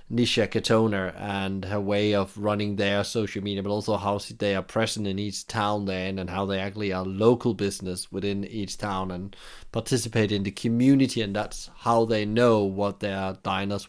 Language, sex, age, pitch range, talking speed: English, male, 30-49, 100-125 Hz, 185 wpm